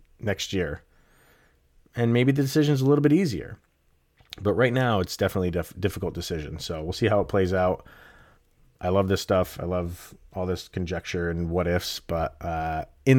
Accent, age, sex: American, 30-49, male